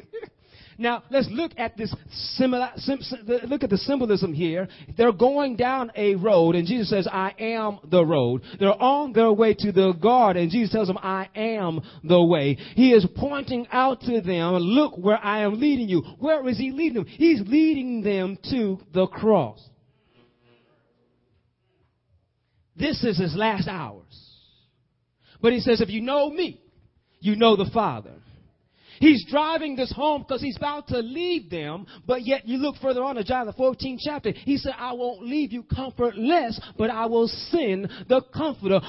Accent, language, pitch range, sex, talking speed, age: American, English, 185-265 Hz, male, 170 wpm, 30-49